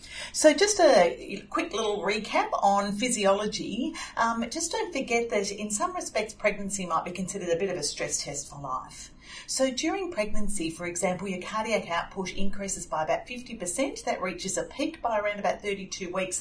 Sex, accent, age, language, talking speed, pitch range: female, Australian, 40-59, English, 180 wpm, 170-230 Hz